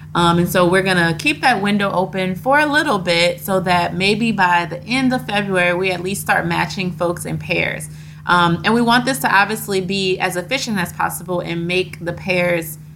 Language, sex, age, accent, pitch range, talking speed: English, female, 20-39, American, 165-200 Hz, 215 wpm